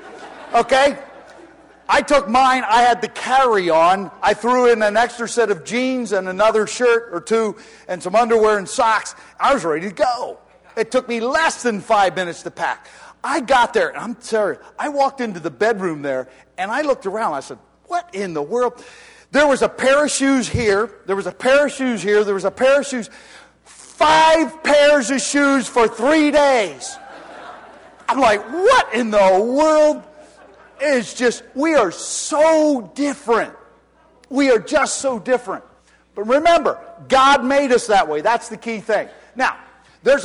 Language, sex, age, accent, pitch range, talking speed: English, male, 40-59, American, 205-275 Hz, 175 wpm